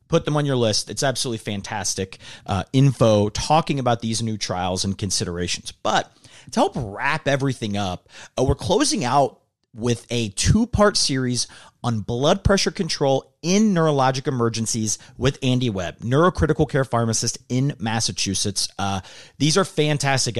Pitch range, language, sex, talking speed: 110-150 Hz, English, male, 145 wpm